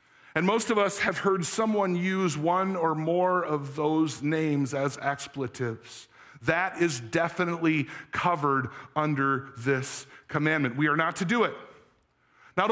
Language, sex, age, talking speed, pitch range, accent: English, male, 50-69, 140 wpm, 140-190 Hz, American